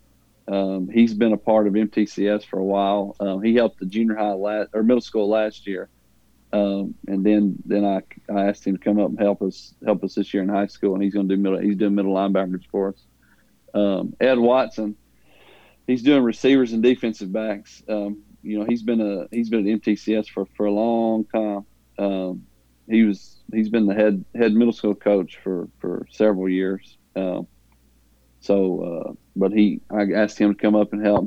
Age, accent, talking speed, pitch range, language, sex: 40-59, American, 205 wpm, 95-110 Hz, English, male